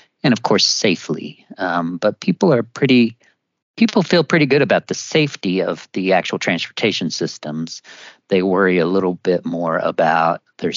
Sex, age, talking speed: male, 40-59, 165 wpm